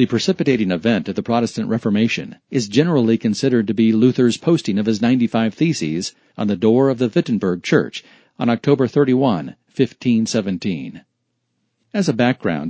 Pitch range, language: 115-135 Hz, English